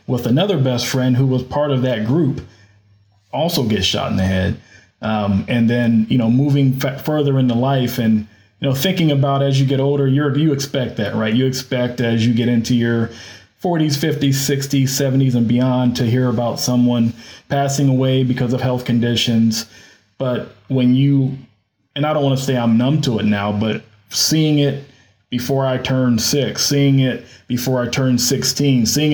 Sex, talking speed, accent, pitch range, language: male, 185 wpm, American, 115-135 Hz, English